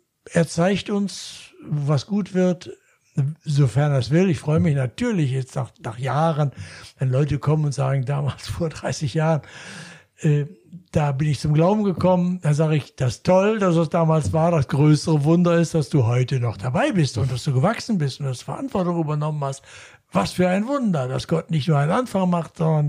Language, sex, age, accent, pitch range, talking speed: German, male, 60-79, German, 140-175 Hz, 200 wpm